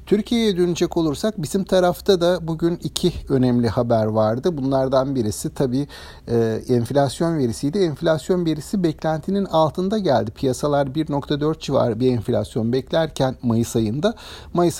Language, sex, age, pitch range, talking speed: Turkish, male, 60-79, 120-165 Hz, 125 wpm